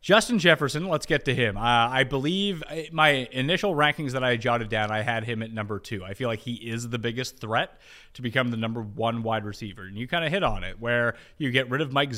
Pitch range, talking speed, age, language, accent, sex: 120-170 Hz, 245 wpm, 30-49, English, American, male